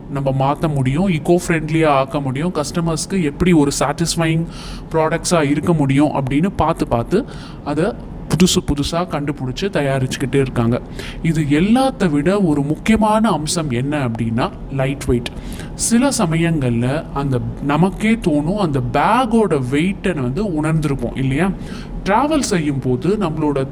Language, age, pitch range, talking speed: Tamil, 20-39, 140-175 Hz, 120 wpm